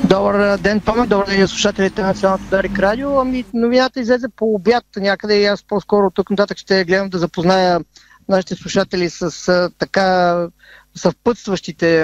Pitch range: 170-200 Hz